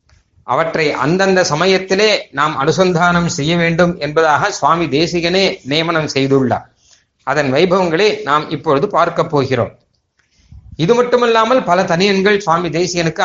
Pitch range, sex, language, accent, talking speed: 145-200 Hz, male, Tamil, native, 110 wpm